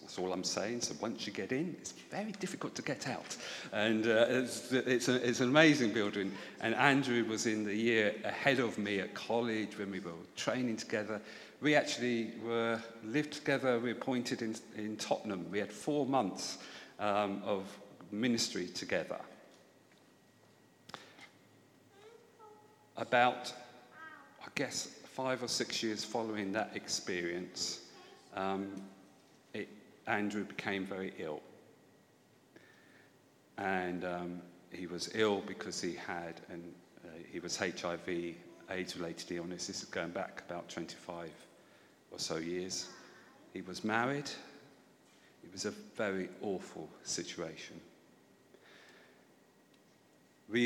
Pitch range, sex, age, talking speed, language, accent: 95-120 Hz, male, 50-69, 120 wpm, English, British